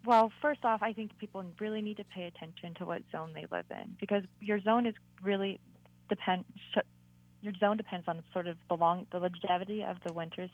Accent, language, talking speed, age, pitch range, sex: American, English, 205 wpm, 20-39, 160-205 Hz, female